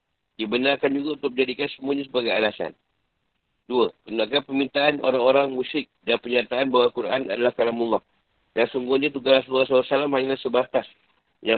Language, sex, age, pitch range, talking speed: Malay, male, 50-69, 120-140 Hz, 140 wpm